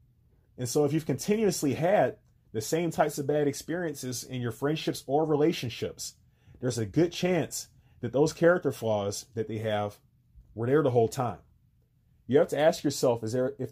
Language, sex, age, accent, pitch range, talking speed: English, male, 30-49, American, 120-150 Hz, 180 wpm